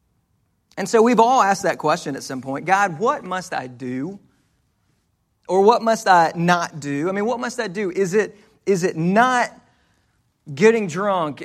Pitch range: 135-200 Hz